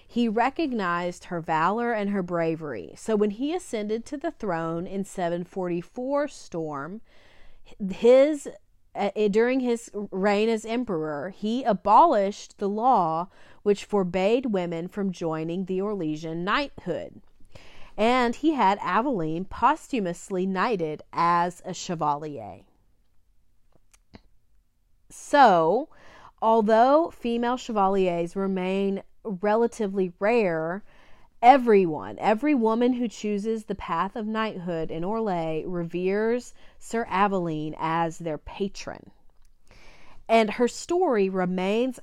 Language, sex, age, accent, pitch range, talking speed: English, female, 30-49, American, 175-225 Hz, 105 wpm